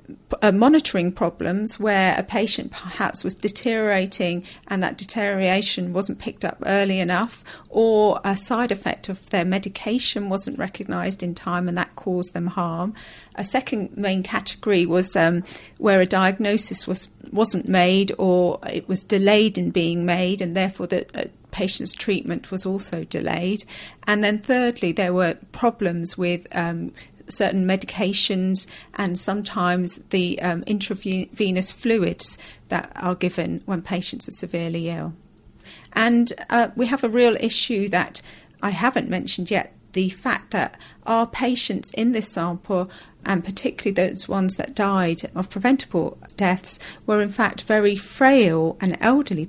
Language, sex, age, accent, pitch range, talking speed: English, female, 40-59, British, 180-220 Hz, 150 wpm